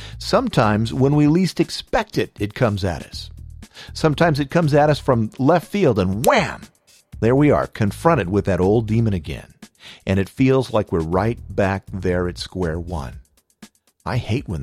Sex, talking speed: male, 175 wpm